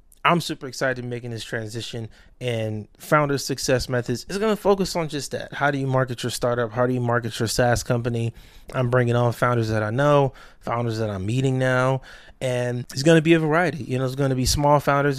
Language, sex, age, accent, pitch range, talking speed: English, male, 20-39, American, 120-140 Hz, 230 wpm